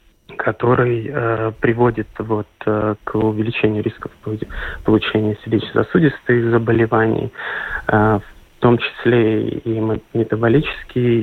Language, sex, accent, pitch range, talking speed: Russian, male, native, 110-125 Hz, 95 wpm